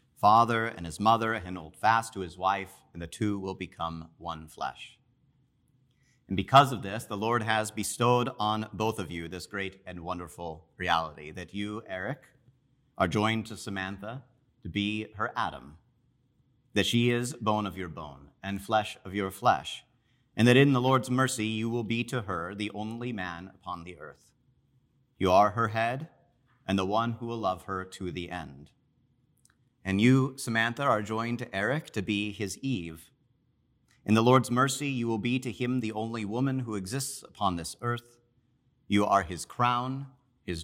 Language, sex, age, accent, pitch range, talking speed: English, male, 30-49, American, 95-125 Hz, 180 wpm